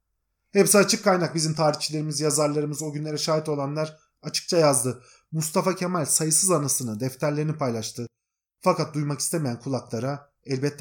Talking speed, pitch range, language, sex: 130 wpm, 135-195 Hz, Turkish, male